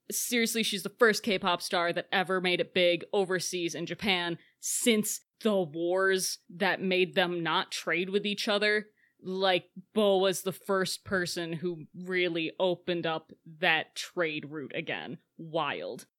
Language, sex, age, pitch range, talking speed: English, female, 20-39, 180-225 Hz, 150 wpm